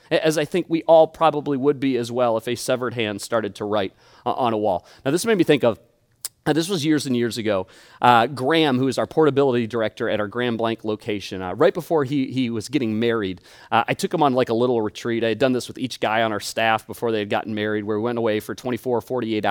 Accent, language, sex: American, English, male